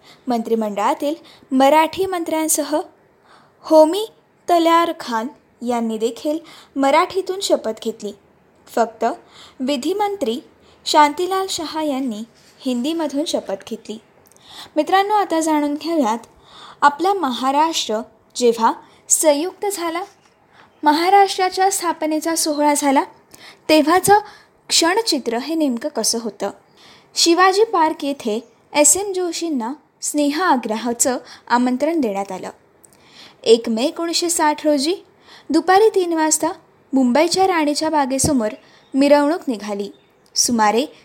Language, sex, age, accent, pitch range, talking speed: Marathi, female, 20-39, native, 235-335 Hz, 90 wpm